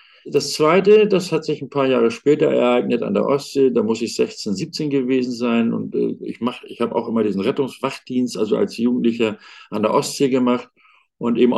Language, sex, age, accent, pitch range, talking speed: German, male, 50-69, German, 120-145 Hz, 190 wpm